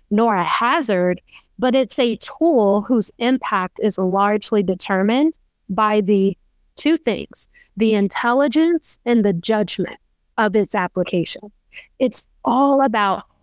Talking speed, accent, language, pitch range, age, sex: 120 wpm, American, English, 200-250 Hz, 20-39, female